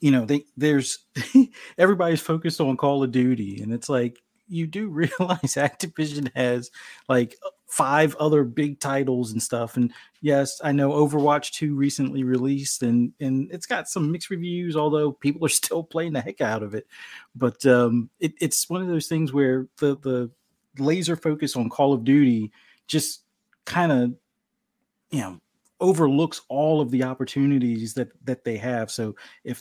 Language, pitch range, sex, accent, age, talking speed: English, 125-155 Hz, male, American, 30-49, 170 wpm